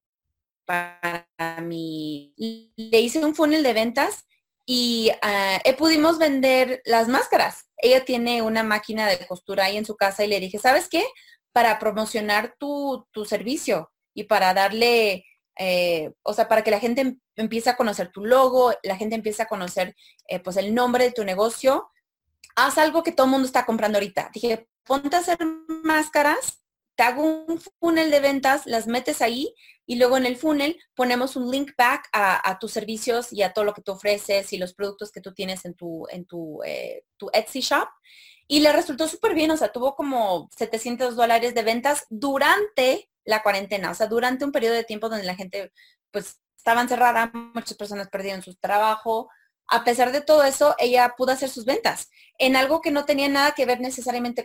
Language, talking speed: Spanish, 190 wpm